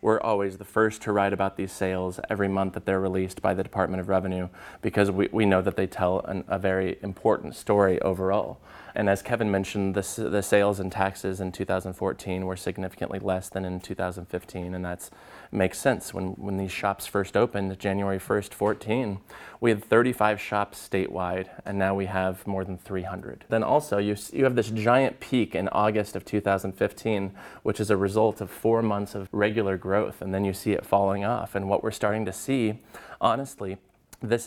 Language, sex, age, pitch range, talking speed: English, male, 20-39, 95-110 Hz, 190 wpm